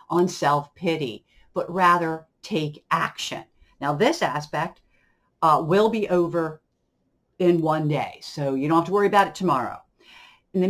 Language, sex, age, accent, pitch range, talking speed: English, female, 50-69, American, 160-200 Hz, 150 wpm